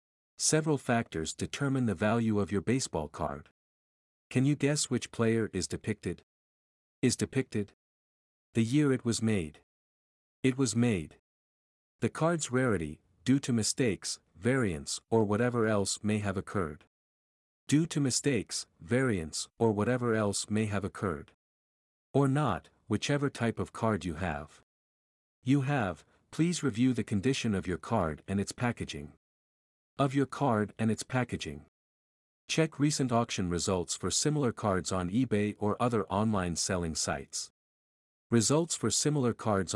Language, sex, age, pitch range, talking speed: English, male, 50-69, 90-125 Hz, 140 wpm